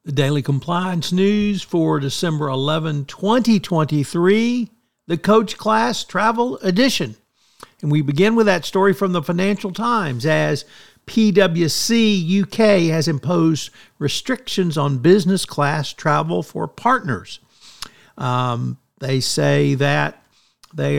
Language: English